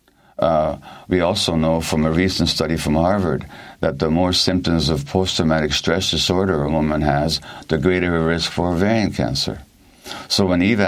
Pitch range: 75-95 Hz